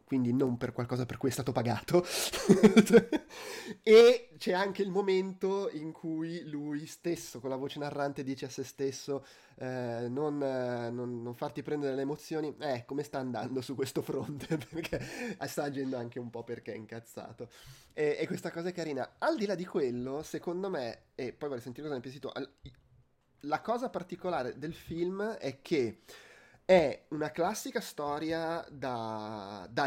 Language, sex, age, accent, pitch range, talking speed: Italian, male, 20-39, native, 130-165 Hz, 175 wpm